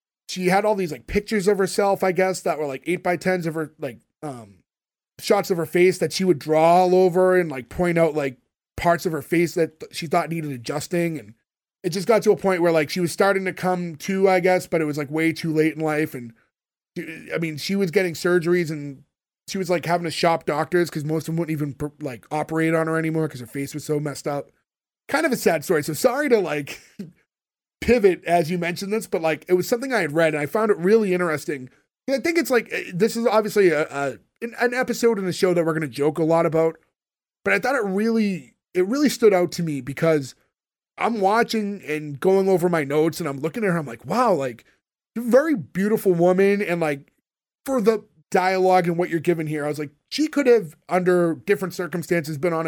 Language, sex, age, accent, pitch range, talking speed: English, male, 30-49, American, 155-195 Hz, 235 wpm